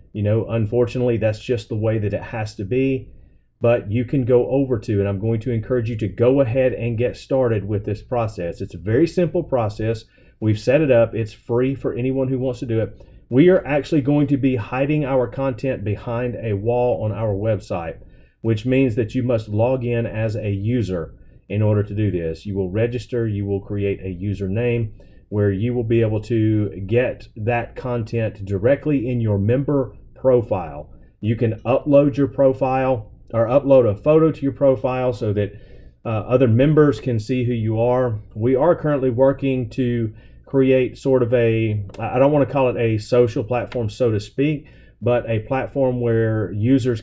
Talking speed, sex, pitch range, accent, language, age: 195 wpm, male, 110-130 Hz, American, English, 30-49